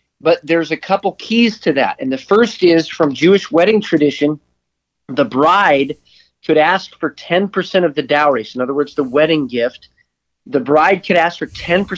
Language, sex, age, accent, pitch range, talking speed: English, male, 40-59, American, 145-185 Hz, 175 wpm